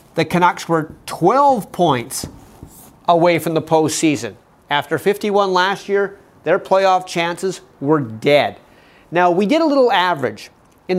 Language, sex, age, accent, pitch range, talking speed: English, male, 30-49, American, 150-205 Hz, 135 wpm